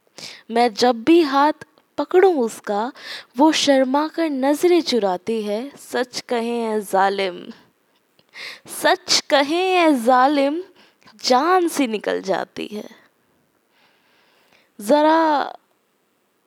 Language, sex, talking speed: Hindi, female, 85 wpm